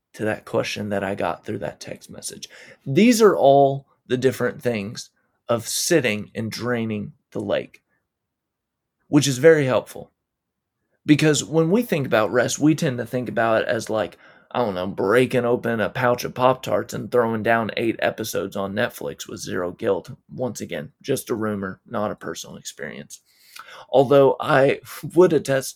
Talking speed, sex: 170 wpm, male